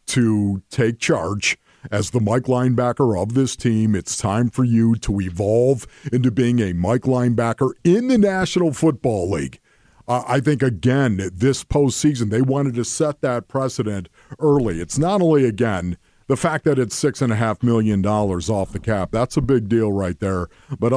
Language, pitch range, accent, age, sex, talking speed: English, 110-145 Hz, American, 50-69, male, 170 wpm